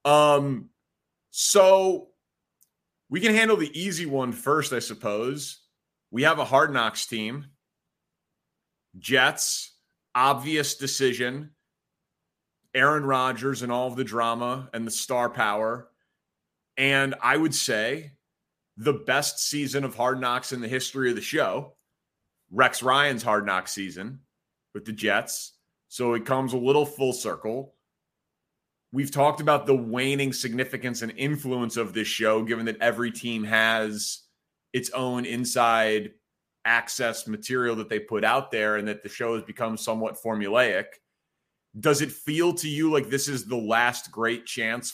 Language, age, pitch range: English, 30-49, 115-140 Hz